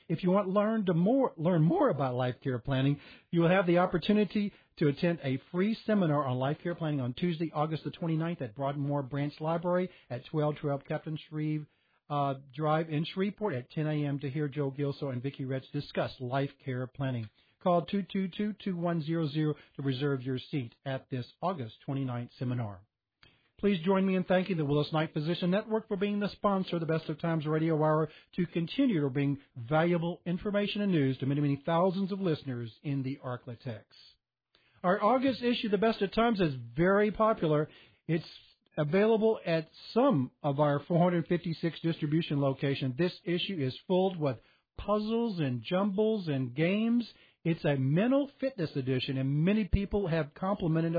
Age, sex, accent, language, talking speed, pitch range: 50-69, male, American, English, 170 wpm, 140-185 Hz